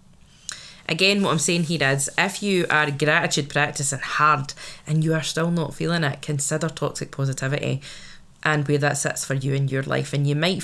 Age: 20-39